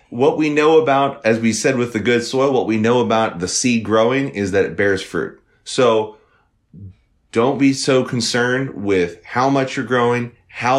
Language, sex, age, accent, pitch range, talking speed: English, male, 30-49, American, 90-115 Hz, 190 wpm